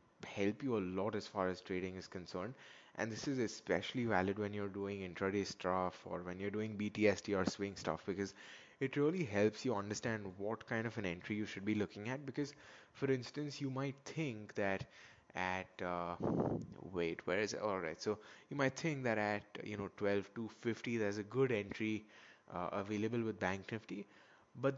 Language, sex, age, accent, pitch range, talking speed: English, male, 20-39, Indian, 100-125 Hz, 190 wpm